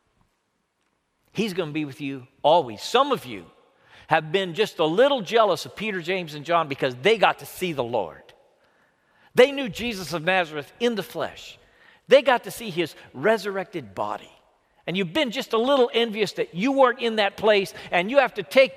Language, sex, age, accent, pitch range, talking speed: English, male, 50-69, American, 180-245 Hz, 195 wpm